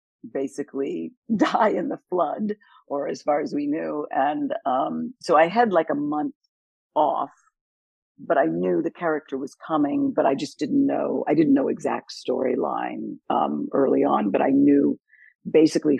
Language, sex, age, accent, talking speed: English, female, 50-69, American, 165 wpm